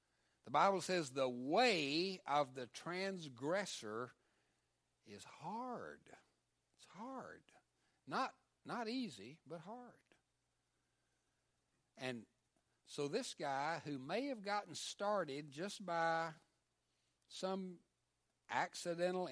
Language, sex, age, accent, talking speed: English, male, 60-79, American, 95 wpm